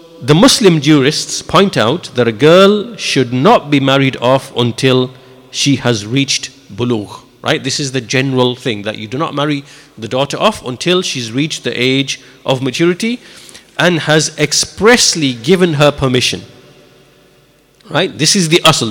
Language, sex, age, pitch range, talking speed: English, male, 50-69, 130-175 Hz, 160 wpm